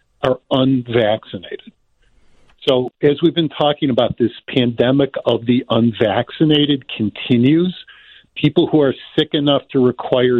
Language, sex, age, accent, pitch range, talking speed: English, male, 50-69, American, 120-145 Hz, 120 wpm